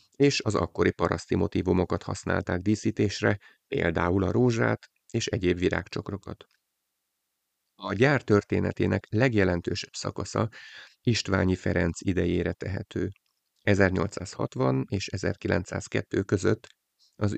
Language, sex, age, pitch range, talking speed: Hungarian, male, 30-49, 90-105 Hz, 95 wpm